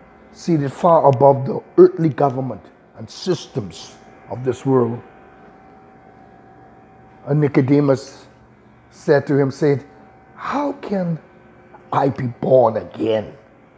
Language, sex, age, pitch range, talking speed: English, male, 60-79, 120-145 Hz, 100 wpm